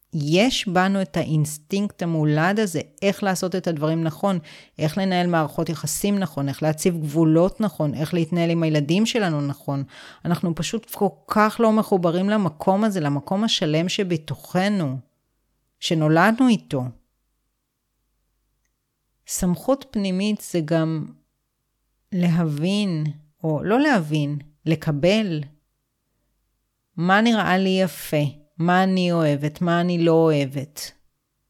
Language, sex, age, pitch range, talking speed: Hebrew, female, 30-49, 150-190 Hz, 100 wpm